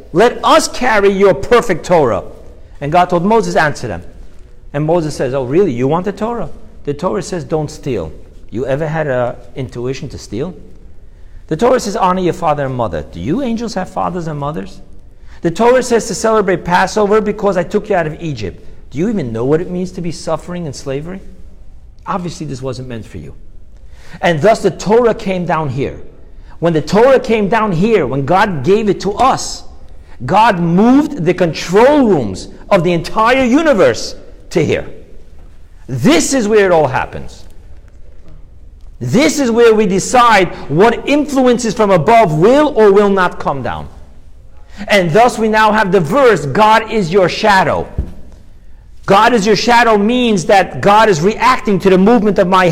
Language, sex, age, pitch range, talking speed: English, male, 50-69, 135-220 Hz, 175 wpm